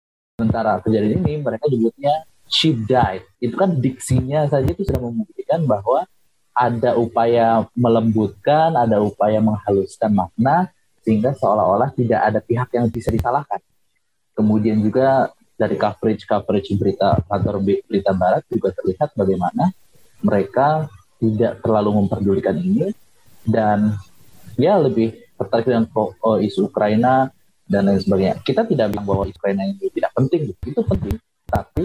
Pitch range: 100-125 Hz